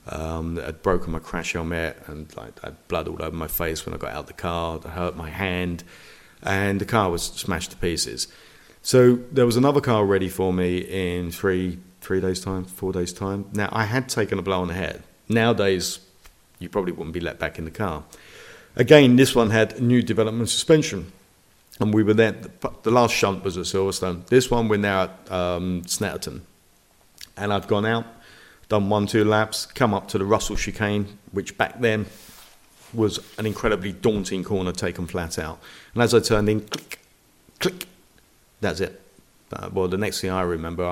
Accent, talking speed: British, 200 wpm